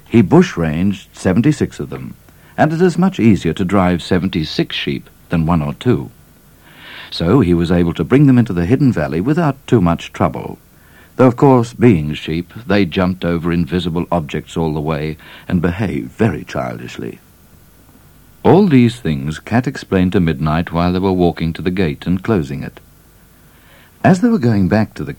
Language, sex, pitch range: English, male, 80-125 Hz